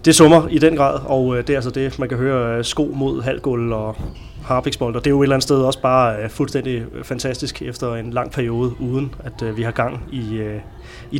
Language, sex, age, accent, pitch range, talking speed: Danish, male, 30-49, native, 115-135 Hz, 220 wpm